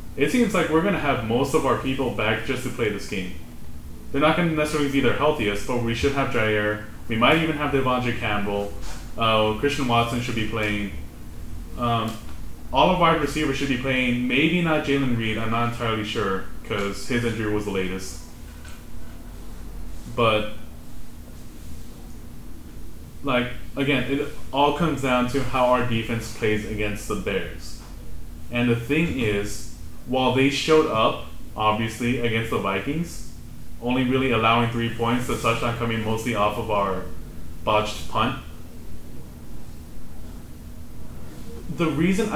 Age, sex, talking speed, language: 20-39, male, 150 wpm, English